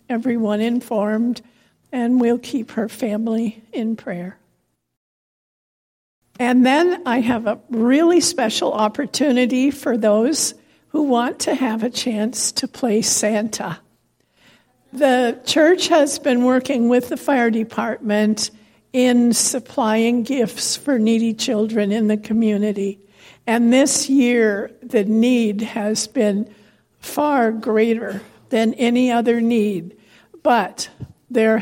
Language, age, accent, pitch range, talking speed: English, 60-79, American, 215-250 Hz, 115 wpm